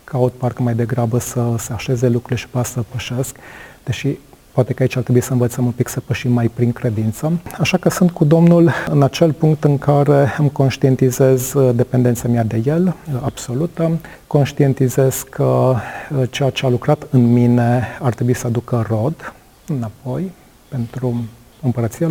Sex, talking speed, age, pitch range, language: male, 160 wpm, 40-59, 120-145 Hz, Romanian